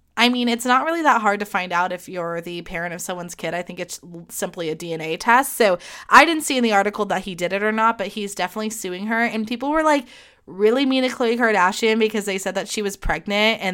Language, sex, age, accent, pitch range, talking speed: English, female, 20-39, American, 190-235 Hz, 260 wpm